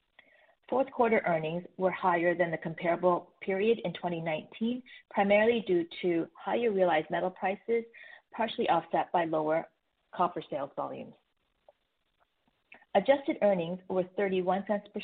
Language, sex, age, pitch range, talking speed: English, female, 40-59, 165-205 Hz, 120 wpm